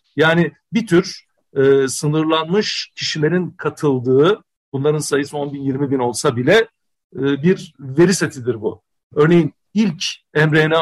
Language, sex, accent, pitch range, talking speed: Turkish, male, native, 135-165 Hz, 130 wpm